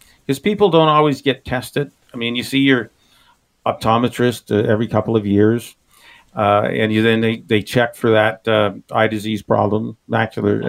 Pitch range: 110-135 Hz